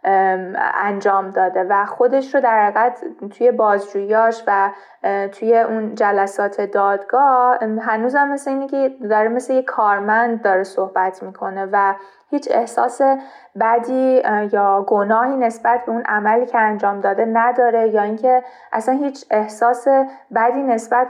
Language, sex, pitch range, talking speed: Persian, female, 200-245 Hz, 130 wpm